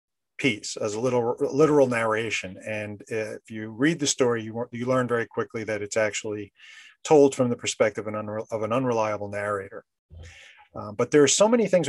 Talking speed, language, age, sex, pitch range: 190 wpm, English, 40-59, male, 105-125 Hz